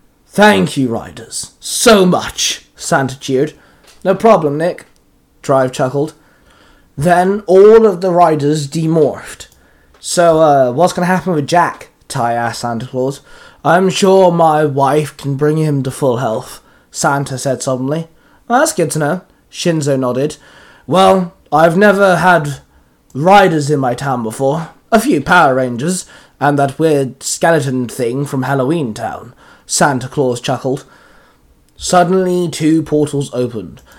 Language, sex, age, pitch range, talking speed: English, male, 20-39, 130-170 Hz, 140 wpm